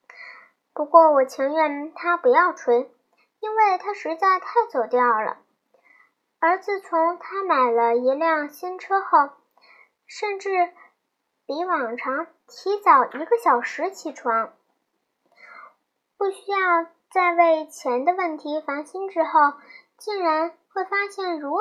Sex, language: male, Chinese